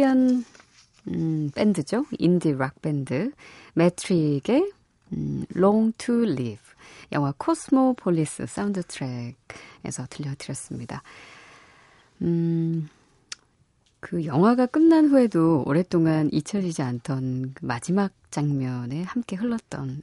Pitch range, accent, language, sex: 140-195 Hz, native, Korean, female